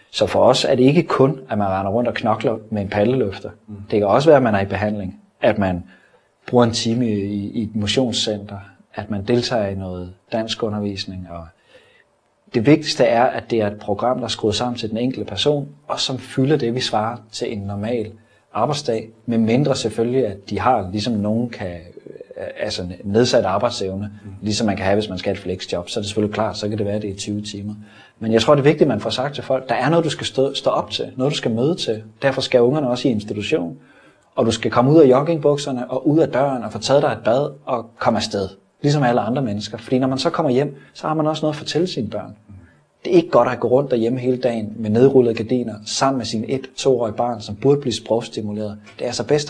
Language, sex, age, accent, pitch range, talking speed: Danish, male, 30-49, native, 105-130 Hz, 245 wpm